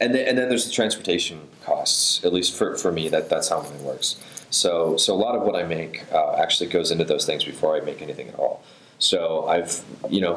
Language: English